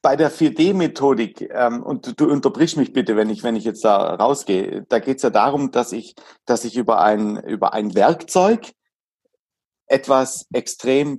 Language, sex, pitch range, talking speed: German, male, 120-185 Hz, 170 wpm